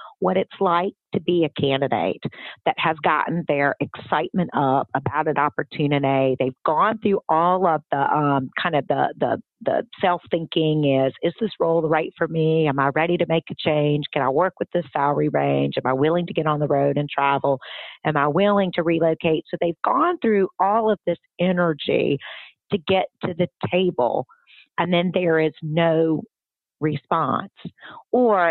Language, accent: English, American